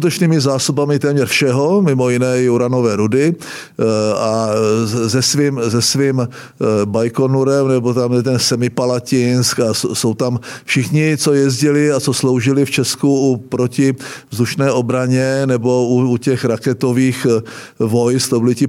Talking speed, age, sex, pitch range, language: 130 wpm, 50-69, male, 125-145 Hz, Czech